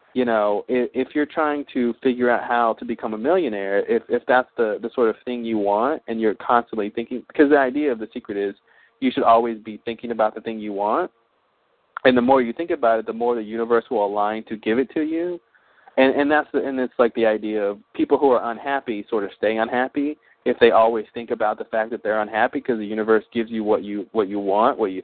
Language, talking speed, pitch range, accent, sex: English, 245 wpm, 110-130 Hz, American, male